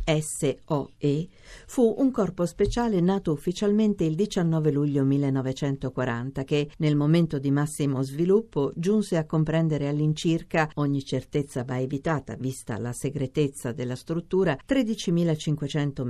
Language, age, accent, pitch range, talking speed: Italian, 50-69, native, 135-175 Hz, 115 wpm